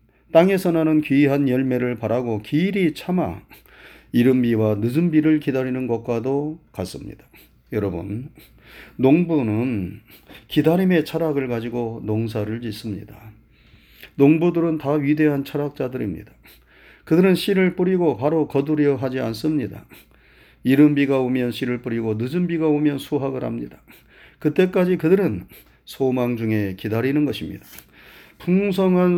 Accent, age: native, 40-59